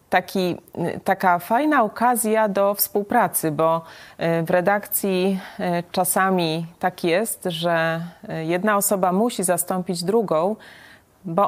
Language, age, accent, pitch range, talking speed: Polish, 30-49, native, 165-195 Hz, 95 wpm